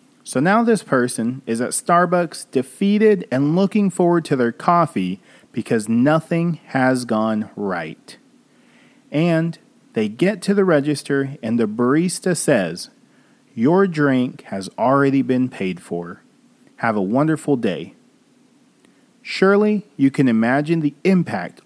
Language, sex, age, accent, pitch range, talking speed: English, male, 40-59, American, 135-205 Hz, 125 wpm